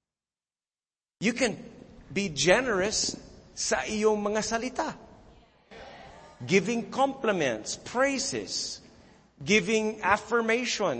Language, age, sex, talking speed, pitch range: English, 50-69, male, 70 wpm, 185-240 Hz